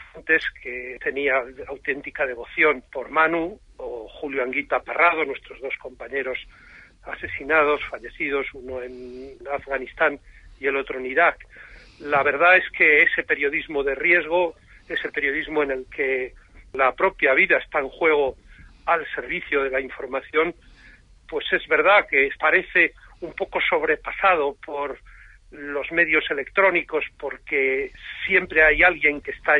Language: Spanish